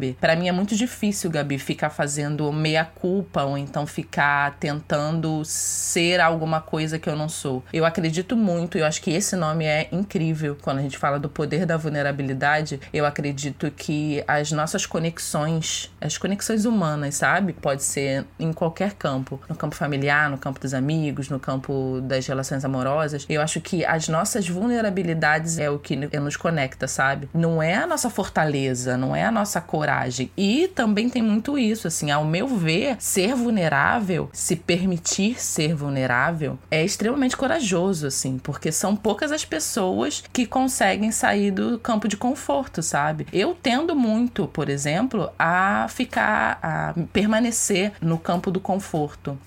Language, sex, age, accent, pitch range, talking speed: Portuguese, female, 20-39, Brazilian, 150-205 Hz, 160 wpm